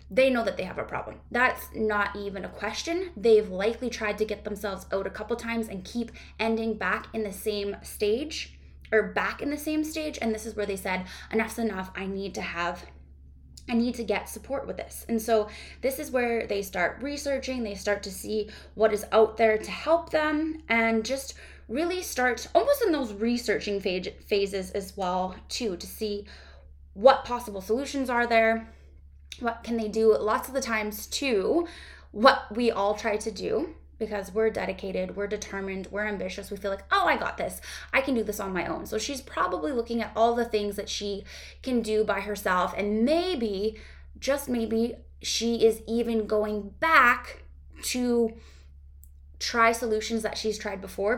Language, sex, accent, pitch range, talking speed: English, female, American, 195-235 Hz, 185 wpm